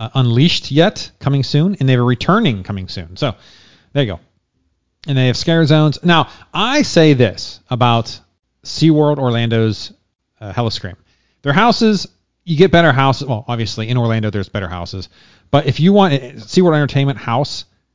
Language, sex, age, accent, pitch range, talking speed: English, male, 40-59, American, 110-145 Hz, 170 wpm